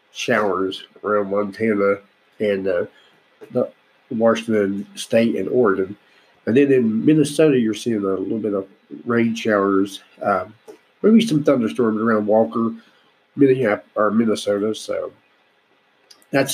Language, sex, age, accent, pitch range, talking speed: English, male, 50-69, American, 105-135 Hz, 125 wpm